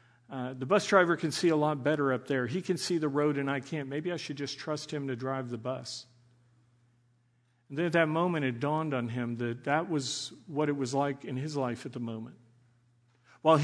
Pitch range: 130-170 Hz